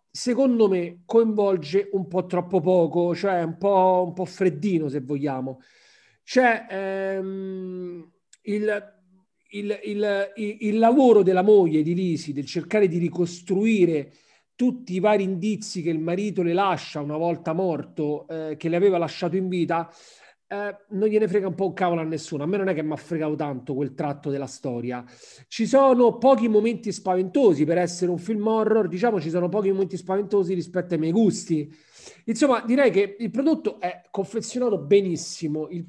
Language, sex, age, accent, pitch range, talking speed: Italian, male, 40-59, native, 165-205 Hz, 170 wpm